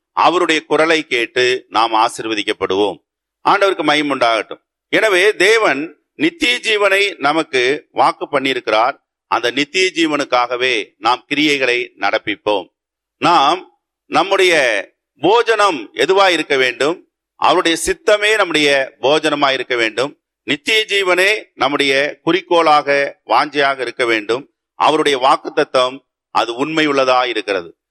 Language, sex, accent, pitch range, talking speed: Tamil, male, native, 150-225 Hz, 95 wpm